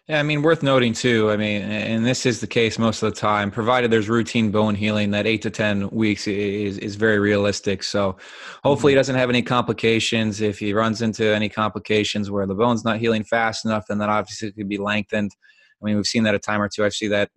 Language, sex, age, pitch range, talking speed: English, male, 20-39, 105-120 Hz, 240 wpm